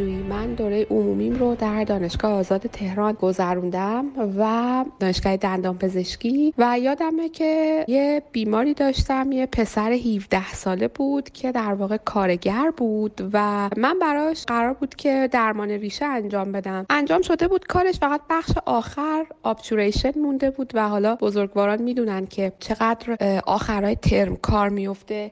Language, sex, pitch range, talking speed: Persian, female, 205-300 Hz, 135 wpm